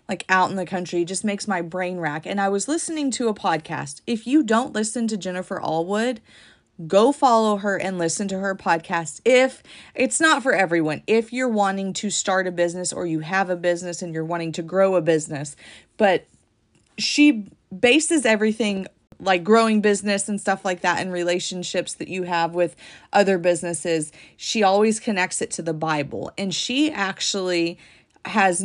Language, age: English, 30-49